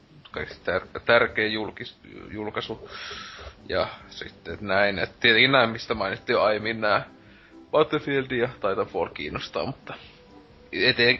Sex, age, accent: male, 30-49, native